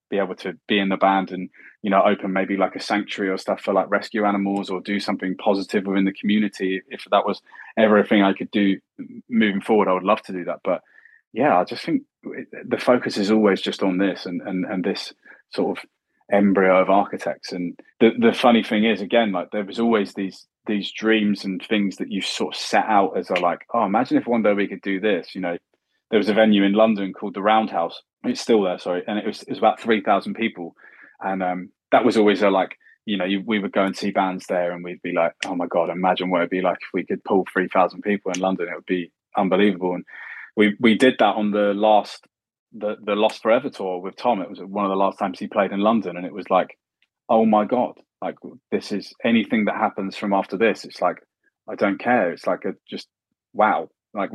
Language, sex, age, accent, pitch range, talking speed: English, male, 20-39, British, 95-105 Hz, 240 wpm